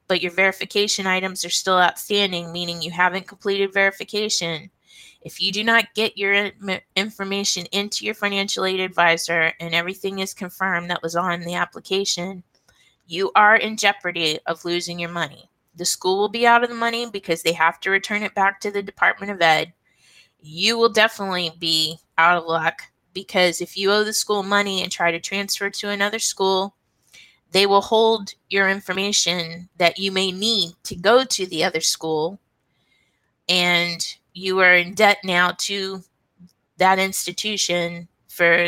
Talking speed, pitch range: 165 wpm, 175-200 Hz